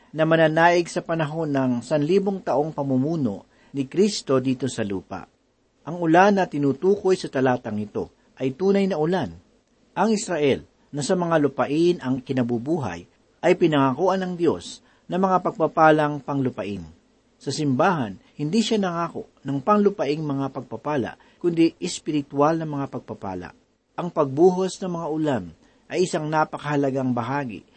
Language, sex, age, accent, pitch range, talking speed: Filipino, male, 50-69, native, 130-175 Hz, 135 wpm